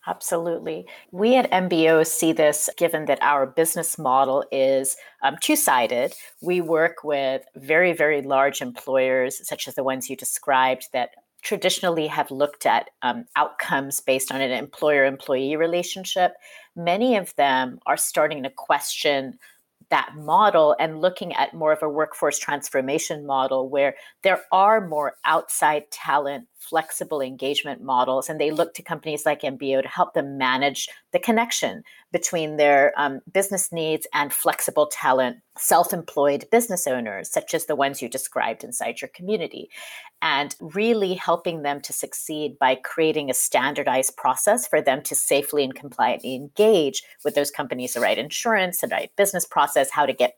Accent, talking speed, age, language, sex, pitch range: American, 155 wpm, 40-59, English, female, 135-180 Hz